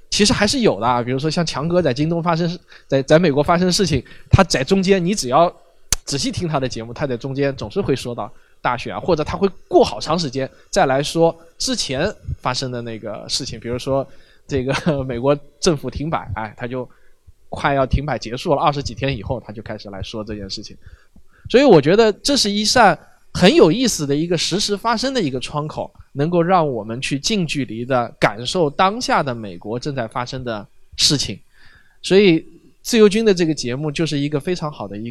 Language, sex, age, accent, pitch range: Chinese, male, 20-39, native, 120-165 Hz